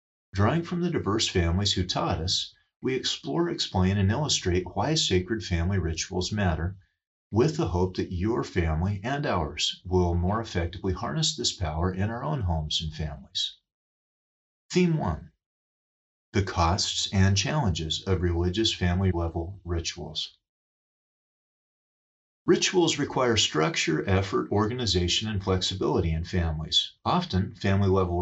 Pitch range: 90-110 Hz